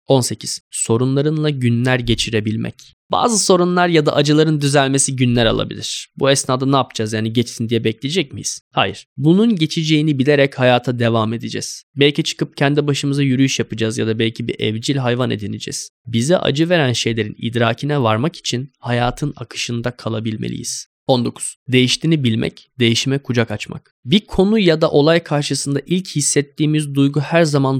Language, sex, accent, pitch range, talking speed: Turkish, male, native, 115-145 Hz, 145 wpm